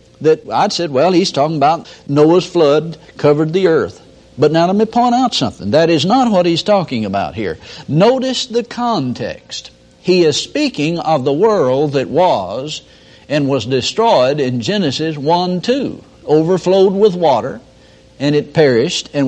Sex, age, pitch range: male, 60-79, 135-185 Hz